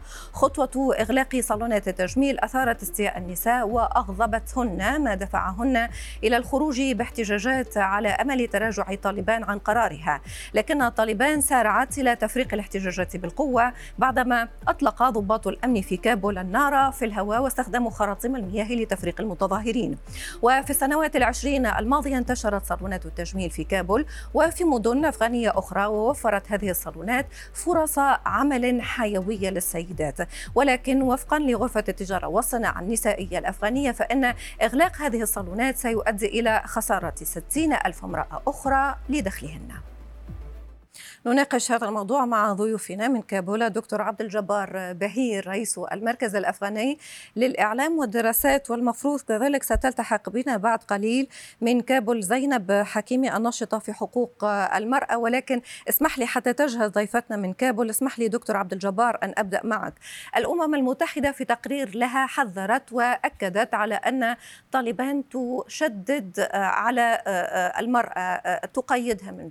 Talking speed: 120 wpm